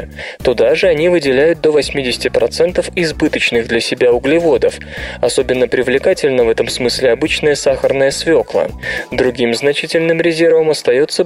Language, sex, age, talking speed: Russian, male, 20-39, 115 wpm